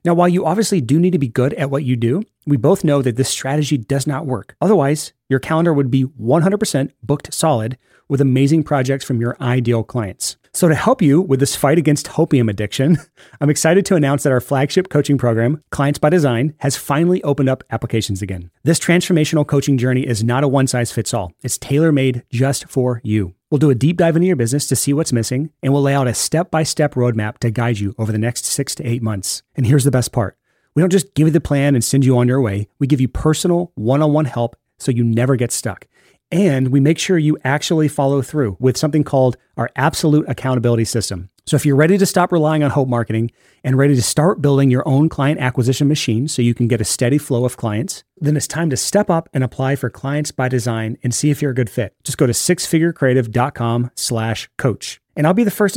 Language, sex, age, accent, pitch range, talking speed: English, male, 30-49, American, 125-155 Hz, 225 wpm